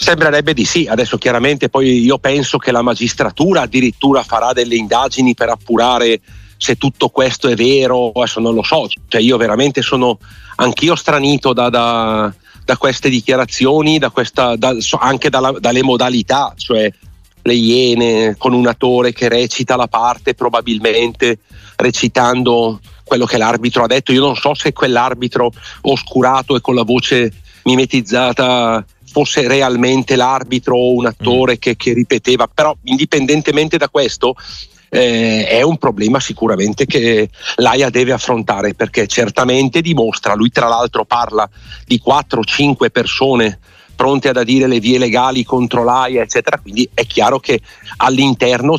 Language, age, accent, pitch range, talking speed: Italian, 40-59, native, 115-130 Hz, 145 wpm